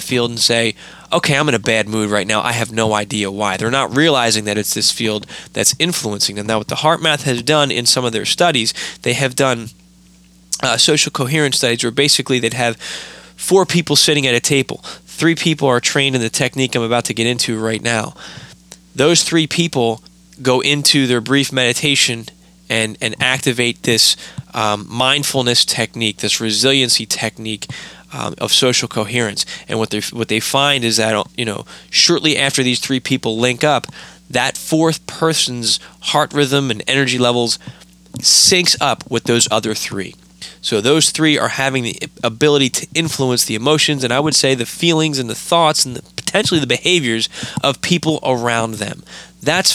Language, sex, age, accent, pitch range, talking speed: English, male, 20-39, American, 110-145 Hz, 180 wpm